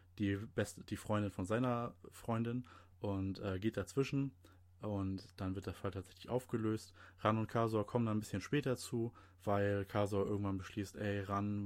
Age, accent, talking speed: 20-39, German, 170 wpm